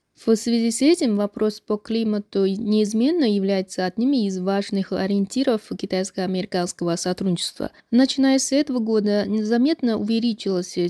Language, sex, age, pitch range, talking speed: Russian, female, 20-39, 190-225 Hz, 115 wpm